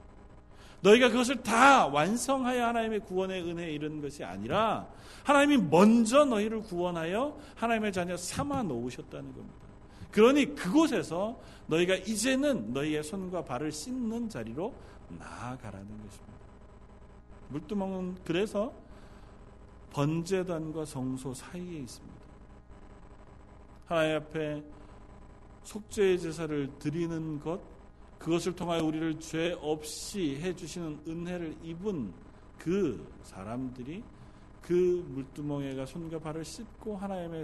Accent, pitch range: native, 145-195 Hz